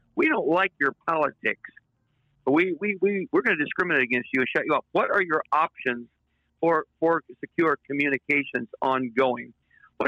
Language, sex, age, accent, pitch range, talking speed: English, male, 60-79, American, 130-190 Hz, 160 wpm